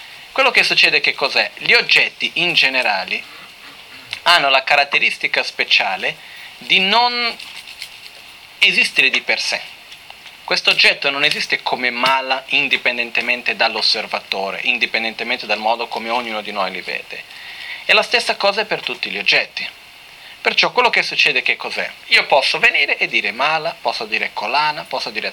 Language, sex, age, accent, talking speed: Italian, male, 40-59, native, 145 wpm